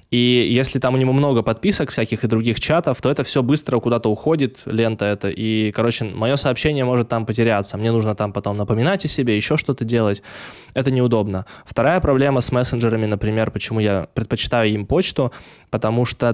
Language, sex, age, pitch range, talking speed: Russian, male, 20-39, 110-130 Hz, 185 wpm